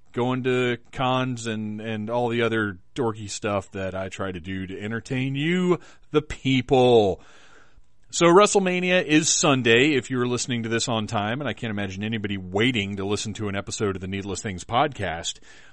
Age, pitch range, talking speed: 40-59, 105-135 Hz, 180 wpm